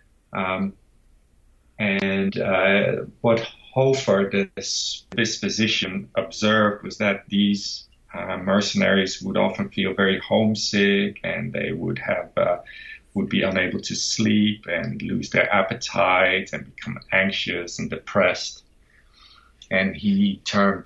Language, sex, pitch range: English, male, 95-115 Hz